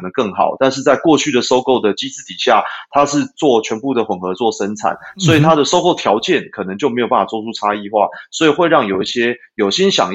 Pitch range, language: 100-130 Hz, Chinese